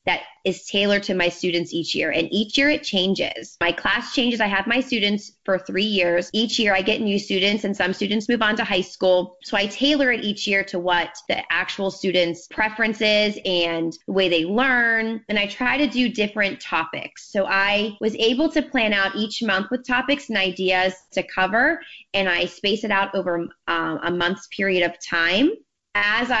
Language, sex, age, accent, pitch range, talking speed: English, female, 20-39, American, 180-220 Hz, 200 wpm